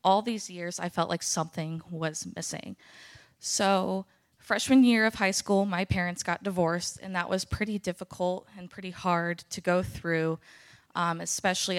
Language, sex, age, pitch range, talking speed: English, female, 20-39, 160-190 Hz, 165 wpm